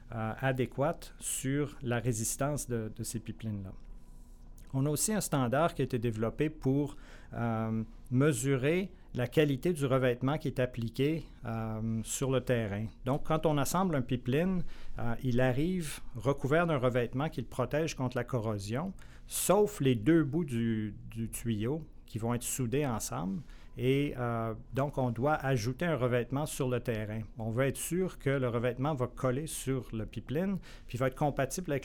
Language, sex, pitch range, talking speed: English, male, 115-140 Hz, 170 wpm